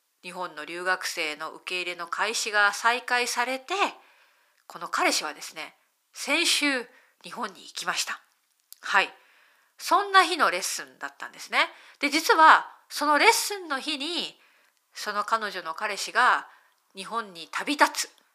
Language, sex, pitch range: Japanese, female, 185-315 Hz